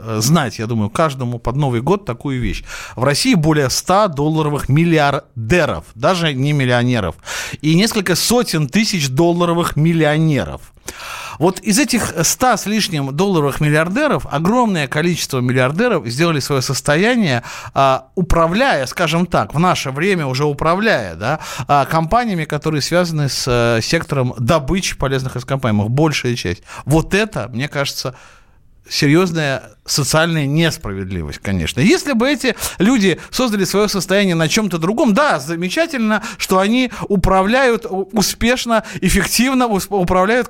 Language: Russian